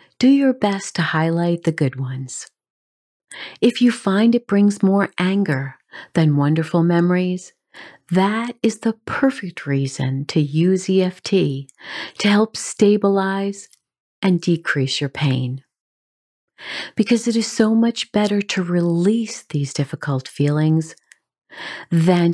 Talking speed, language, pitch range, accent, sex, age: 120 wpm, English, 140-200 Hz, American, female, 40-59